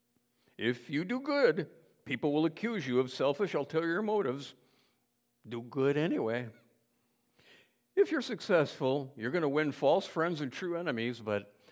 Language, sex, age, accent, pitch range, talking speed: English, male, 60-79, American, 120-170 Hz, 160 wpm